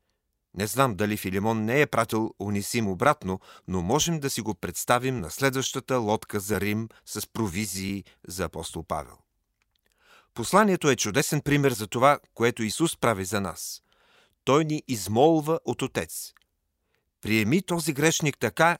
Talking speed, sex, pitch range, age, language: 145 wpm, male, 105-135 Hz, 40-59, Bulgarian